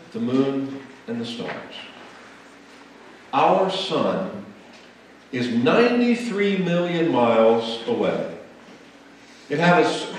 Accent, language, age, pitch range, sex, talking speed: American, English, 50-69, 135-220 Hz, male, 80 wpm